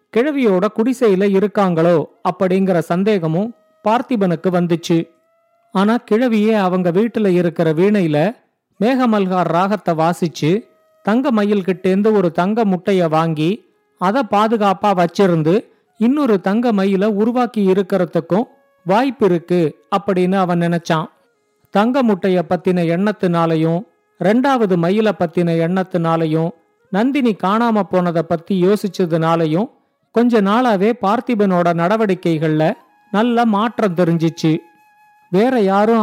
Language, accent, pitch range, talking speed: Tamil, native, 175-225 Hz, 95 wpm